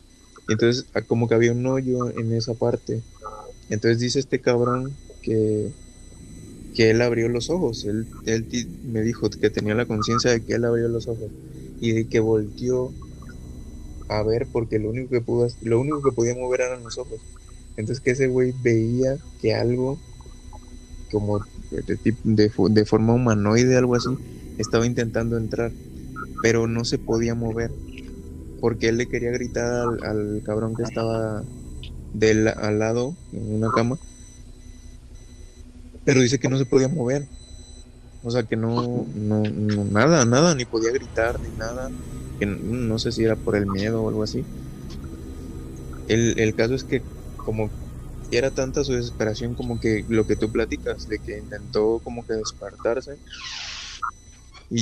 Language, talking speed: Spanish, 160 wpm